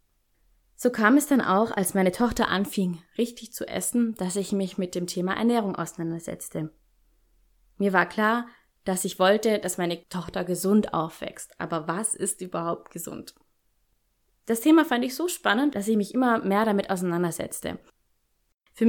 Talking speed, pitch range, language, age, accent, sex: 160 wpm, 180-230 Hz, German, 20-39, German, female